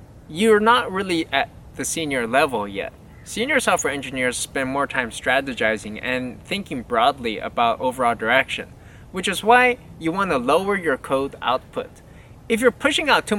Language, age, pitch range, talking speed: English, 20-39, 150-220 Hz, 160 wpm